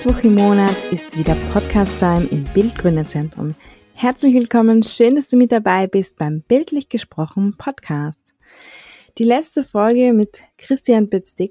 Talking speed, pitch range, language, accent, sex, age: 135 wpm, 190-230 Hz, German, German, female, 20-39